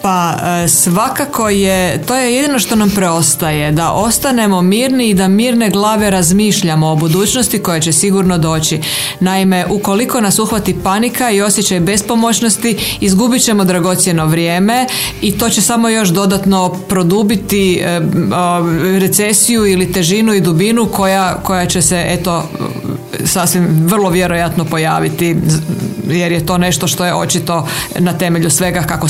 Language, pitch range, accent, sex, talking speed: Croatian, 170-205 Hz, native, female, 140 wpm